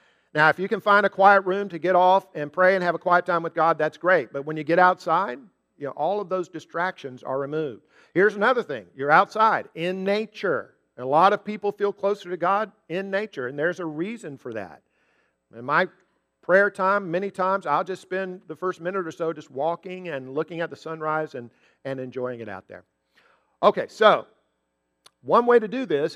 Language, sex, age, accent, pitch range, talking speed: English, male, 50-69, American, 150-195 Hz, 205 wpm